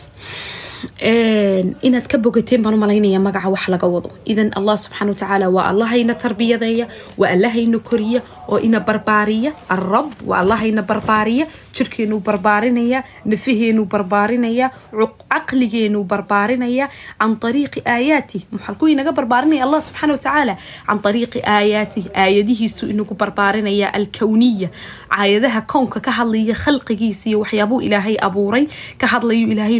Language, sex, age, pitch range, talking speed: Bengali, female, 20-39, 210-245 Hz, 50 wpm